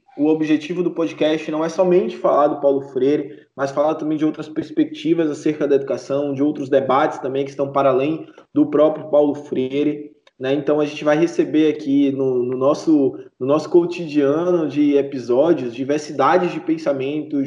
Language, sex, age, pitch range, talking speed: Portuguese, male, 20-39, 140-170 Hz, 170 wpm